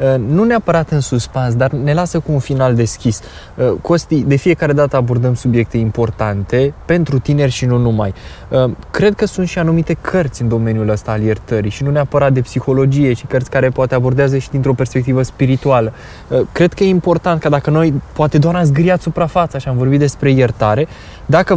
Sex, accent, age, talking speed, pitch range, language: male, native, 20-39, 180 wpm, 125-160 Hz, Romanian